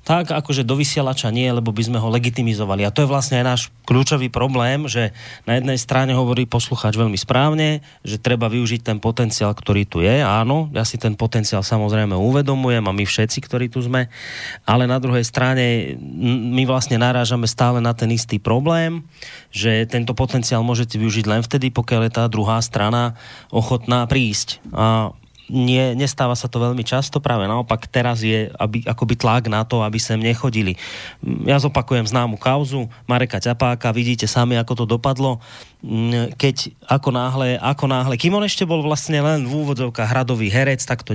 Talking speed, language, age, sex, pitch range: 175 wpm, Slovak, 30-49, male, 115-135 Hz